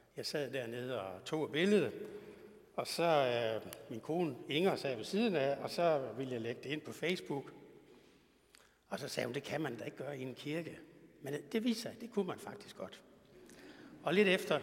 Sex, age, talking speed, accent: male, 60-79, 205 wpm, native